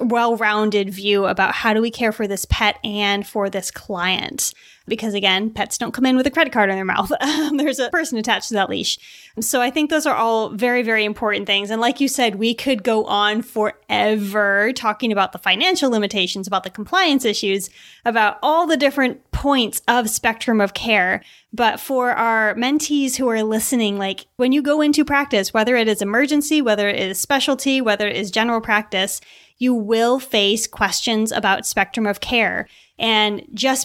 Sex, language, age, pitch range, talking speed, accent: female, English, 20-39, 205-245 Hz, 190 wpm, American